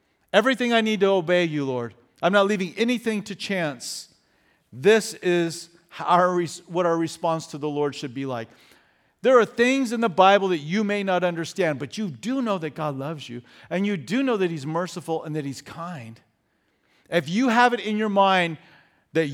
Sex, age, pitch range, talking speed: male, 50-69, 130-180 Hz, 190 wpm